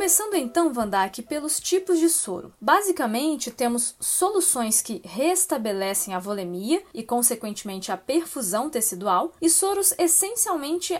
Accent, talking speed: Brazilian, 120 wpm